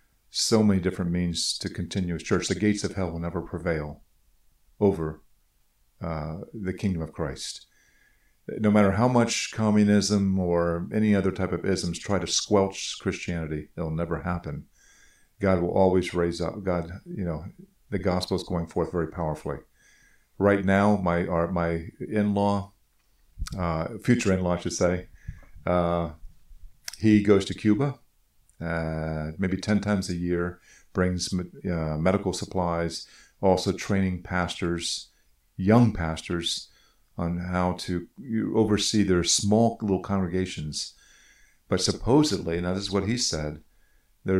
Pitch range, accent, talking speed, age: 85-100 Hz, American, 140 wpm, 50-69